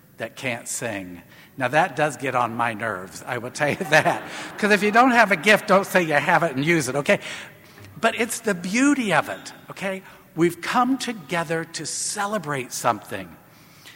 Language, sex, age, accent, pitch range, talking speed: English, male, 60-79, American, 125-180 Hz, 190 wpm